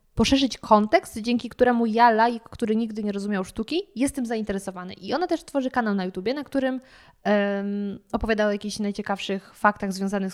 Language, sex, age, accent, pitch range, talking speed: Polish, female, 20-39, native, 205-255 Hz, 170 wpm